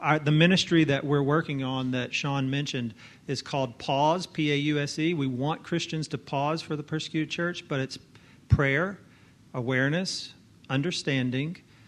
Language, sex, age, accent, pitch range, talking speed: English, male, 40-59, American, 130-155 Hz, 140 wpm